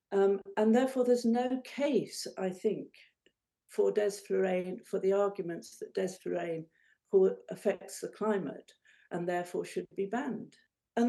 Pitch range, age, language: 195-285 Hz, 60-79, English